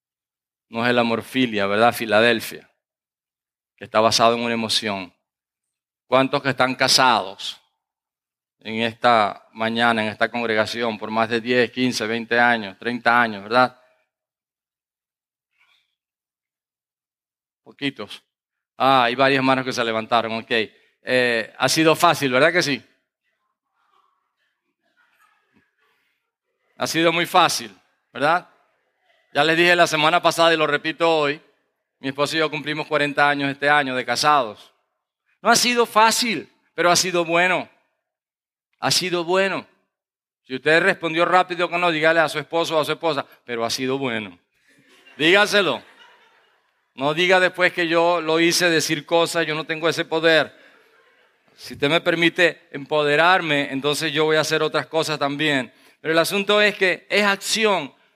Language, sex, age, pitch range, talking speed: English, male, 40-59, 120-170 Hz, 140 wpm